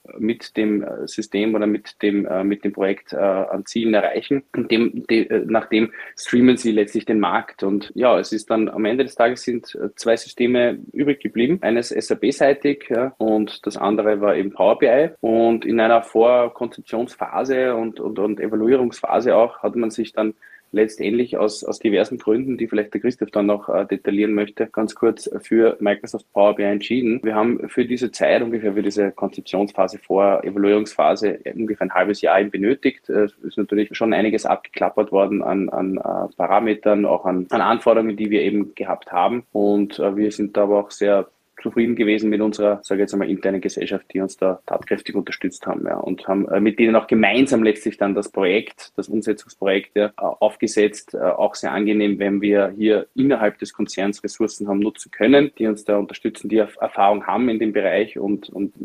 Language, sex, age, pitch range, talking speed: German, male, 20-39, 100-115 Hz, 180 wpm